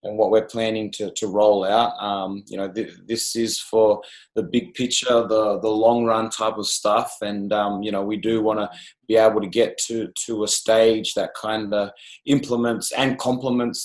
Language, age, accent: English, 20-39, Australian